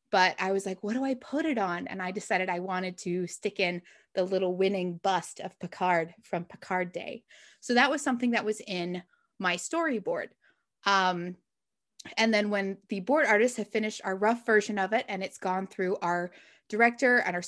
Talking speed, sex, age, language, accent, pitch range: 200 wpm, female, 20-39, English, American, 185-230 Hz